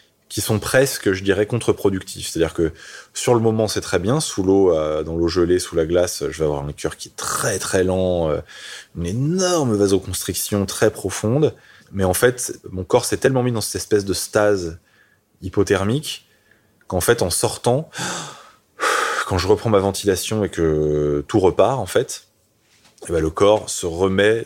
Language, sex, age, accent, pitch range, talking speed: French, male, 20-39, French, 85-105 Hz, 175 wpm